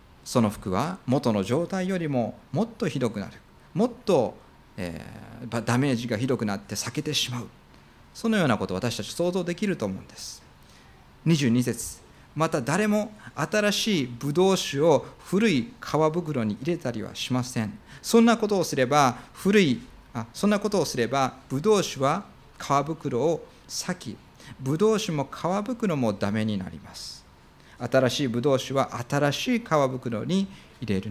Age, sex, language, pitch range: 40-59, male, Japanese, 115-175 Hz